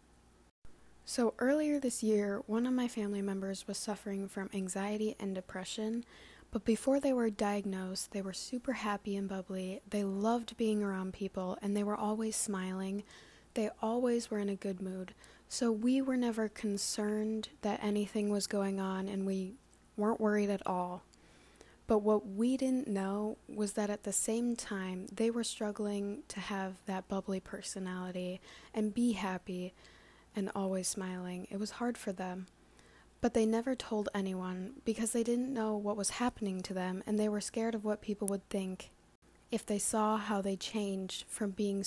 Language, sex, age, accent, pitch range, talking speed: English, female, 20-39, American, 190-220 Hz, 170 wpm